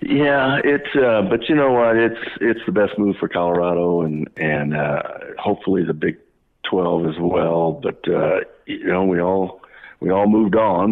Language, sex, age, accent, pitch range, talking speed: English, male, 60-79, American, 85-100 Hz, 180 wpm